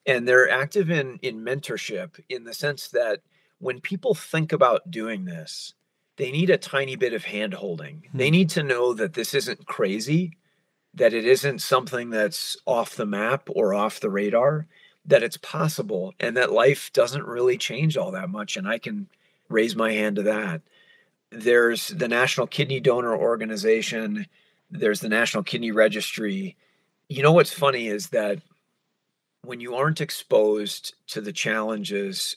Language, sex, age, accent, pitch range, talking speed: English, male, 40-59, American, 110-185 Hz, 160 wpm